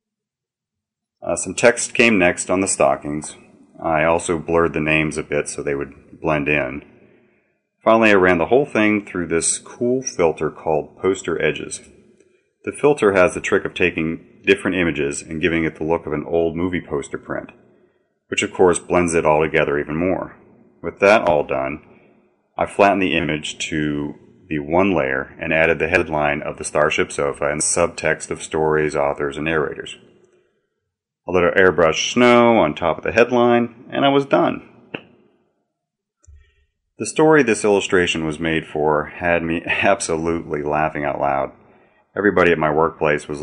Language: English